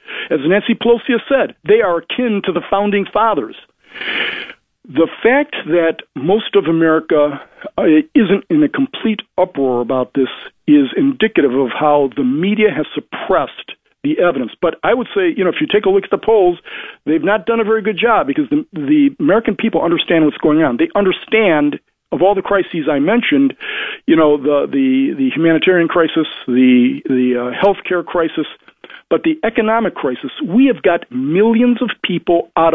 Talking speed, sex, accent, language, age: 180 wpm, male, American, English, 50-69